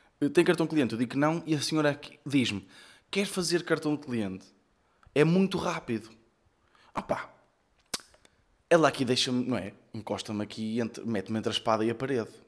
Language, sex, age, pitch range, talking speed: Portuguese, male, 20-39, 115-165 Hz, 175 wpm